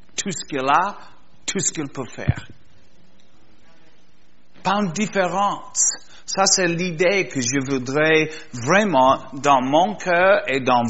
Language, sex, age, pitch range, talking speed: French, male, 60-79, 150-195 Hz, 130 wpm